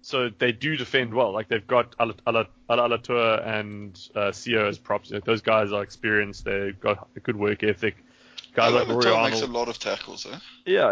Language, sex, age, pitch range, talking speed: English, male, 20-39, 110-145 Hz, 160 wpm